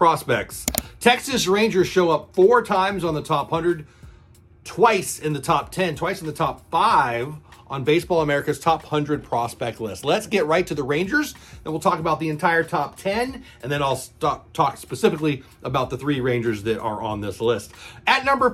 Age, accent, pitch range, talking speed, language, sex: 40-59, American, 145-190 Hz, 190 wpm, English, male